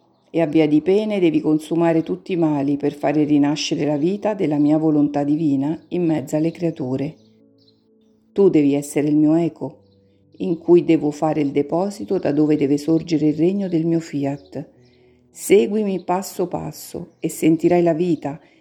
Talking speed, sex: 165 wpm, female